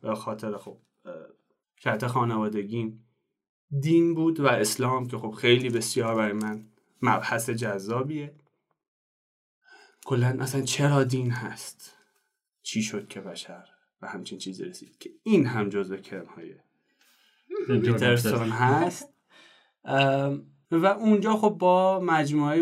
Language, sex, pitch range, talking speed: Persian, male, 115-165 Hz, 115 wpm